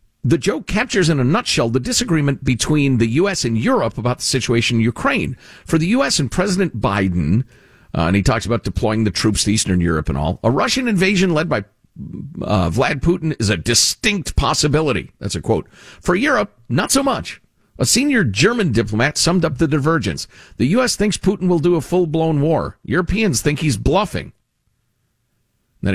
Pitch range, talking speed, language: 110-165 Hz, 185 wpm, English